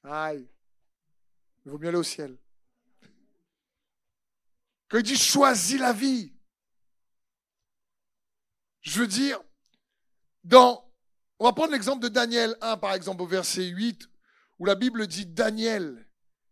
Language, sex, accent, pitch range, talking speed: French, male, French, 165-220 Hz, 125 wpm